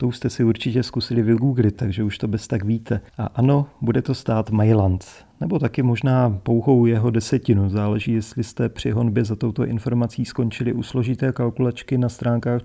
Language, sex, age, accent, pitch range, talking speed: Czech, male, 40-59, native, 115-130 Hz, 180 wpm